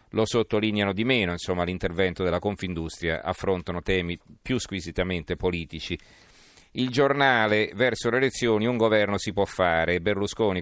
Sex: male